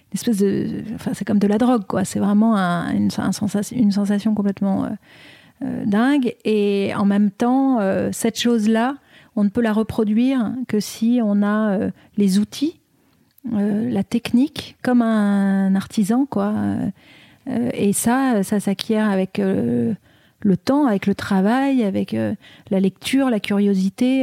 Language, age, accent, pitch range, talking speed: French, 40-59, French, 200-235 Hz, 155 wpm